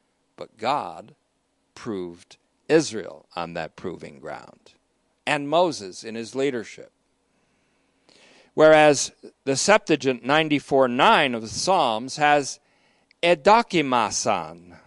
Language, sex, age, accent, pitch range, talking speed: English, male, 50-69, American, 125-165 Hz, 95 wpm